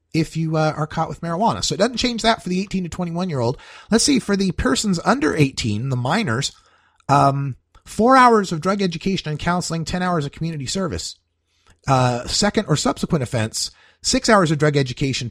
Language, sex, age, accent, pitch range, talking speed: English, male, 30-49, American, 115-185 Hz, 200 wpm